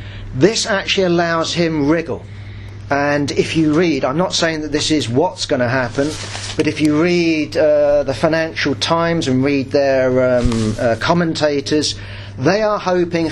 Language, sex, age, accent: English, male, 40-59, British